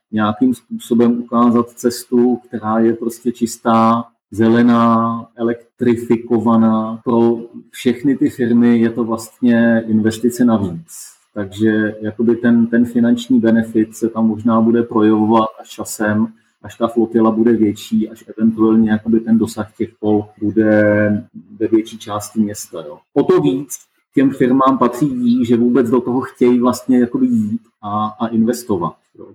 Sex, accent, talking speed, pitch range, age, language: male, native, 135 wpm, 110-130 Hz, 30-49, Czech